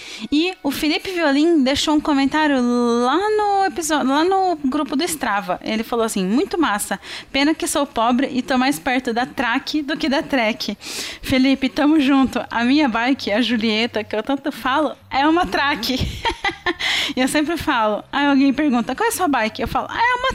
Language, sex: Portuguese, female